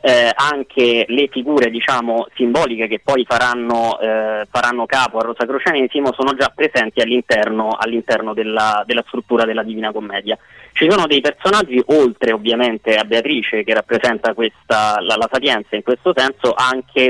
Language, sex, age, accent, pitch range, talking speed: Italian, male, 20-39, native, 115-135 Hz, 155 wpm